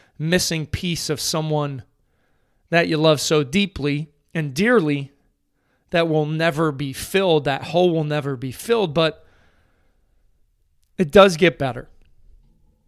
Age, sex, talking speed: 30-49, male, 125 wpm